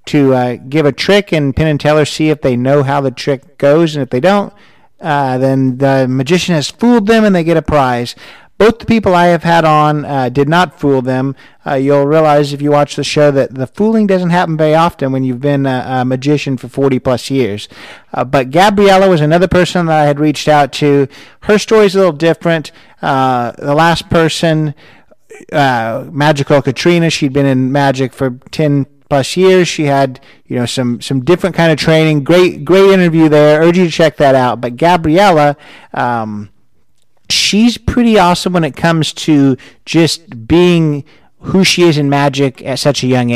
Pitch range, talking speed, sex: 135-170 Hz, 200 wpm, male